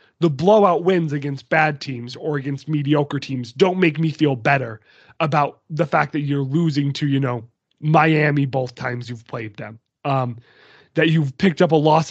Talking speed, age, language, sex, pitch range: 185 wpm, 20-39, English, male, 135-165 Hz